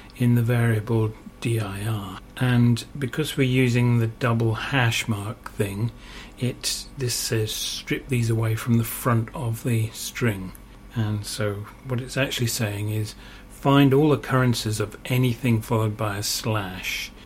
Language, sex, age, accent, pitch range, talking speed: English, male, 40-59, British, 105-125 Hz, 145 wpm